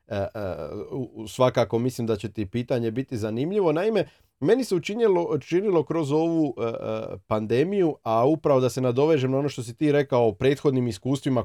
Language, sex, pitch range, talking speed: Croatian, male, 115-160 Hz, 150 wpm